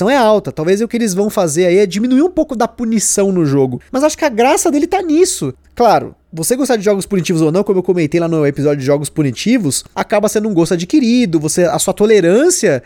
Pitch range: 175-240 Hz